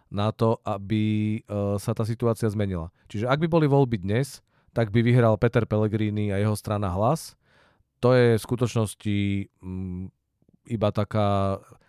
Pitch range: 90-105 Hz